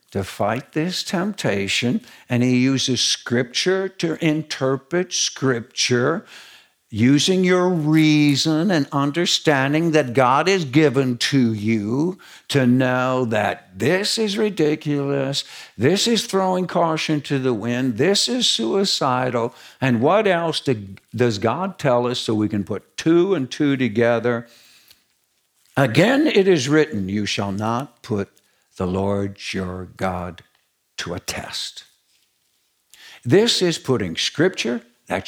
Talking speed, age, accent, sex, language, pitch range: 125 wpm, 60-79, American, male, English, 115-160 Hz